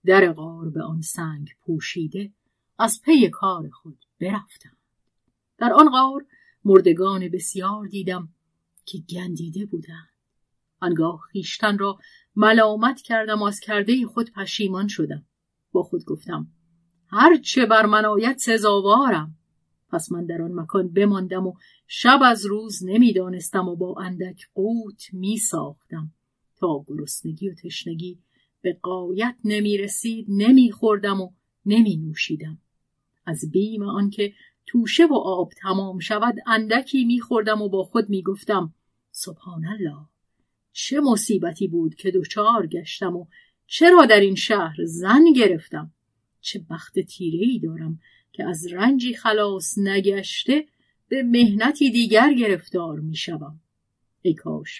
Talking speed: 120 wpm